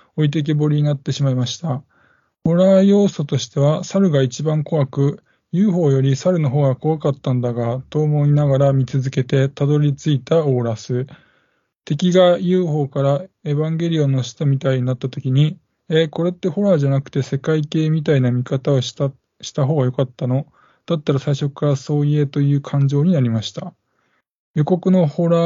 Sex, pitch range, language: male, 130-165 Hz, Japanese